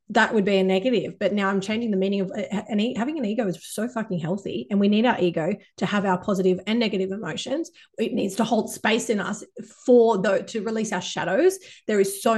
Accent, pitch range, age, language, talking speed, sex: Australian, 195-245 Hz, 30-49, English, 240 wpm, female